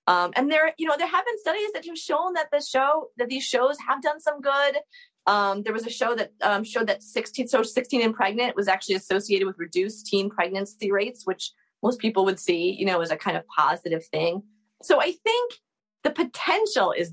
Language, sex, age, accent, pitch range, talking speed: English, female, 30-49, American, 190-255 Hz, 220 wpm